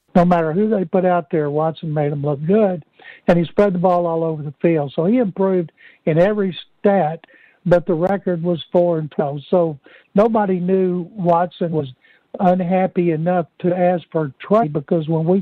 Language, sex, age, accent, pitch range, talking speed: English, male, 60-79, American, 155-185 Hz, 185 wpm